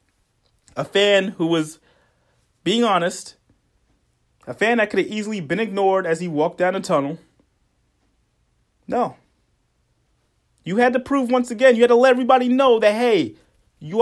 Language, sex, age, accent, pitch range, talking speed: English, male, 30-49, American, 175-245 Hz, 155 wpm